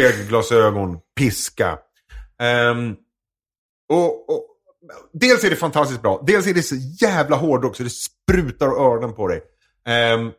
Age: 30-49